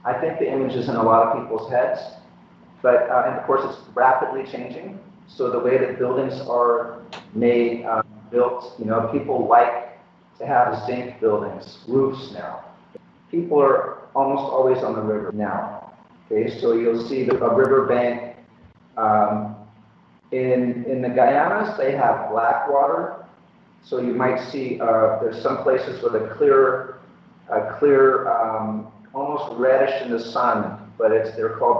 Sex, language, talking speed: male, English, 160 wpm